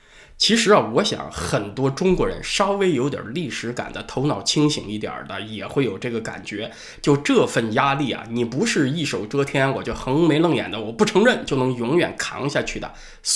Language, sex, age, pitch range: Chinese, male, 20-39, 115-160 Hz